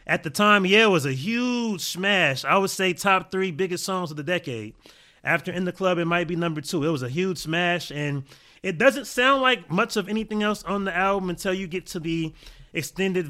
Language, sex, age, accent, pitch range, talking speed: English, male, 30-49, American, 155-195 Hz, 230 wpm